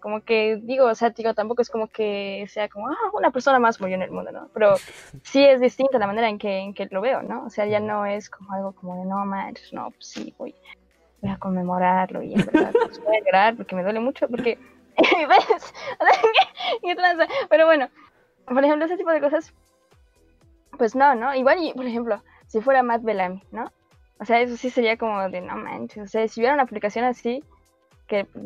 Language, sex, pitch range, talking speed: Spanish, female, 210-290 Hz, 215 wpm